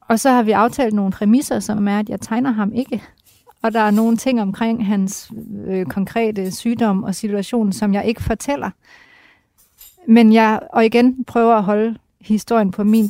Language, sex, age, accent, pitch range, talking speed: Danish, female, 30-49, native, 185-215 Hz, 185 wpm